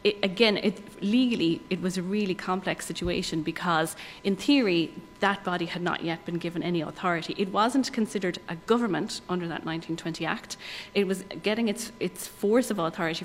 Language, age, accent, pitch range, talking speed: English, 30-49, Irish, 170-205 Hz, 175 wpm